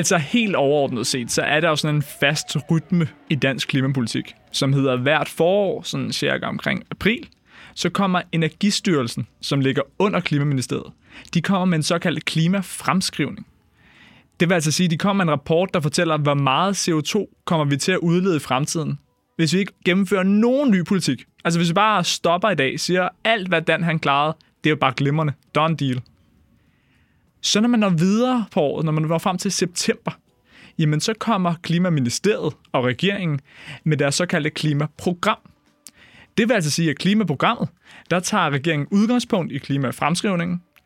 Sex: male